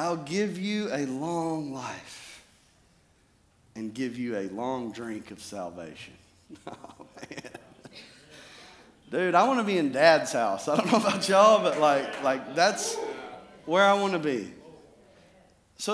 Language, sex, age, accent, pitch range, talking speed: English, male, 40-59, American, 150-205 Hz, 140 wpm